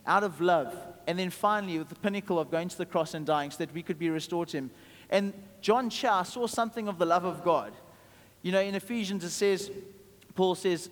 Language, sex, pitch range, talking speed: English, male, 165-200 Hz, 230 wpm